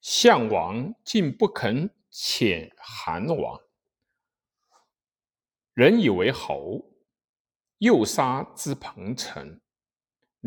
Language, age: Chinese, 50-69